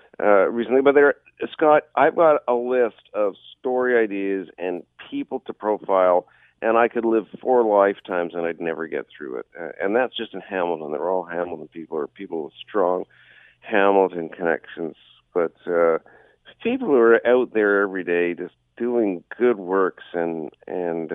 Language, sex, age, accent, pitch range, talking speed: English, male, 50-69, American, 90-120 Hz, 165 wpm